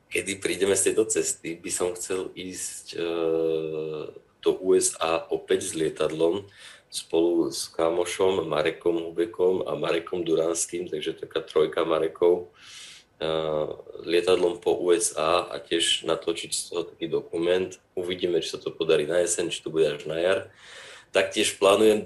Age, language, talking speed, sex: 30-49, Czech, 140 wpm, male